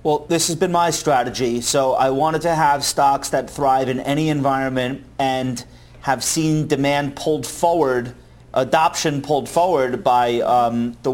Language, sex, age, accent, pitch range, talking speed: English, male, 30-49, American, 120-150 Hz, 155 wpm